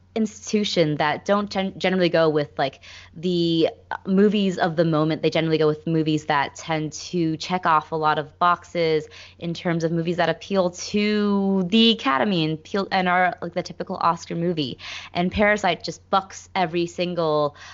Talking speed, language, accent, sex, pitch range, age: 165 wpm, English, American, female, 155-180 Hz, 20-39